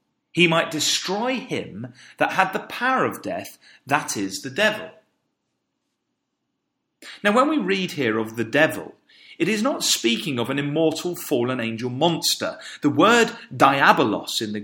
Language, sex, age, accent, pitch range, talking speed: English, male, 40-59, British, 155-255 Hz, 150 wpm